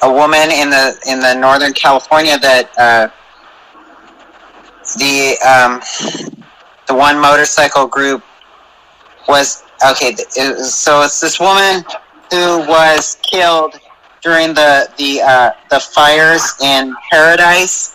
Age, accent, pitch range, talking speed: 30-49, American, 130-155 Hz, 115 wpm